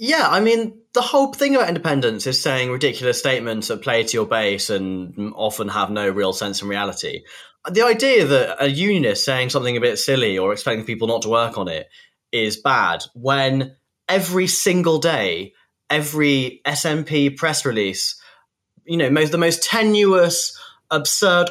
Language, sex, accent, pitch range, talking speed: English, male, British, 135-225 Hz, 165 wpm